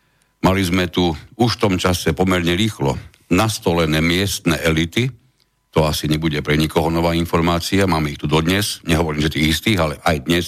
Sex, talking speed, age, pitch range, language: male, 170 wpm, 60-79, 85-110 Hz, Slovak